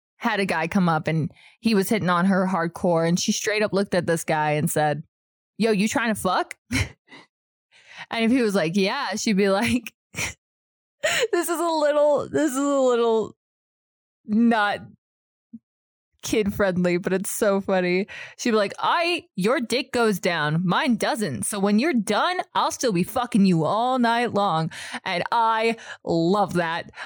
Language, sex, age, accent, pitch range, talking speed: English, female, 20-39, American, 175-255 Hz, 170 wpm